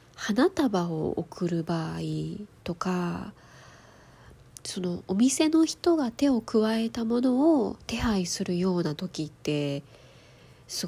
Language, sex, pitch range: Japanese, female, 165-235 Hz